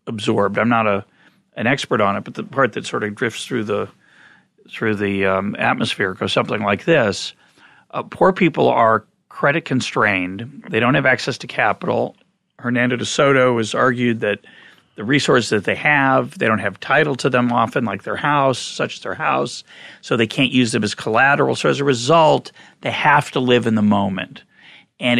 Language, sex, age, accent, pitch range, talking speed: English, male, 40-59, American, 115-165 Hz, 195 wpm